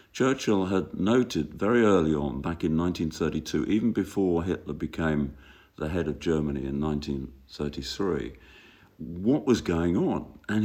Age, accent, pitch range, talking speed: 50-69, British, 75-95 Hz, 135 wpm